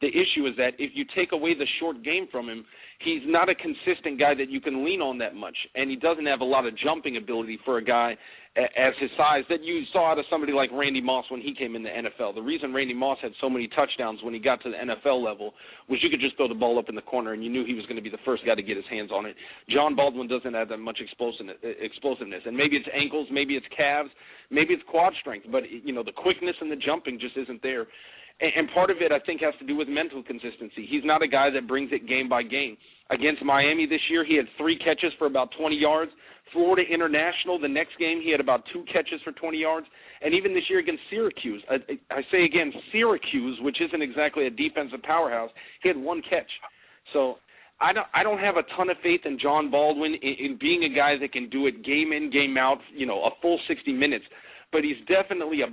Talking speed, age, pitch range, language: 250 wpm, 40-59, 130-170 Hz, English